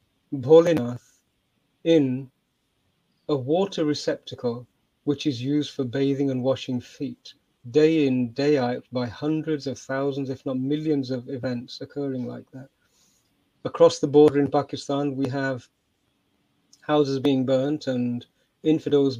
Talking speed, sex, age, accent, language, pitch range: 125 wpm, male, 40-59, British, English, 130-155 Hz